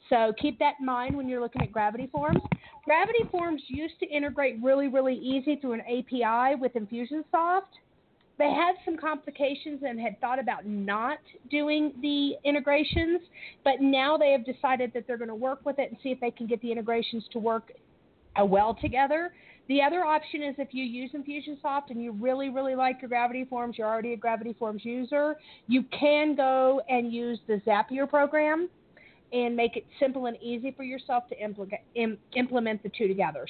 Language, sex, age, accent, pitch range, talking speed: English, female, 40-59, American, 240-295 Hz, 190 wpm